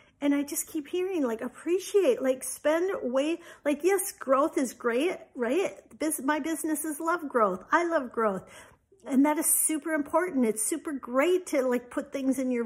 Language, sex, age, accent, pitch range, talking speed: English, female, 50-69, American, 245-310 Hz, 175 wpm